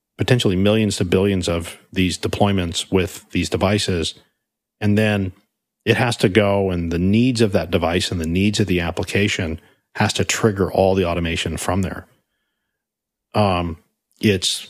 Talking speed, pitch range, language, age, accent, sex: 155 wpm, 90-105 Hz, English, 40-59, American, male